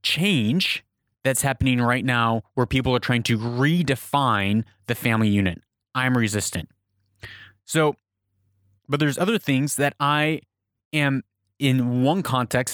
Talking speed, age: 125 wpm, 20-39